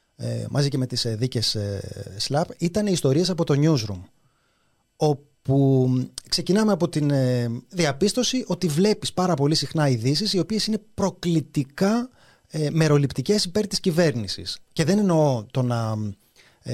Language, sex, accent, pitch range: Greek, male, native, 125-180 Hz